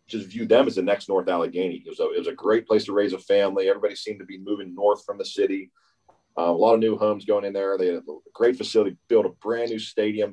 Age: 40-59